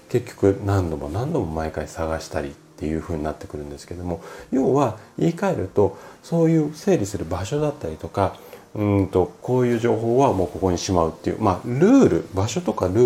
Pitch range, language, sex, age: 90-145 Hz, Japanese, male, 40-59